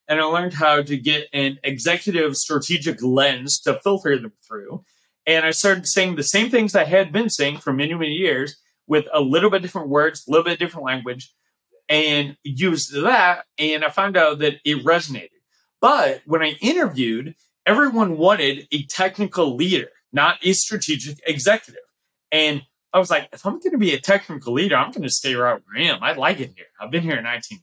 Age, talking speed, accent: 30-49, 200 wpm, American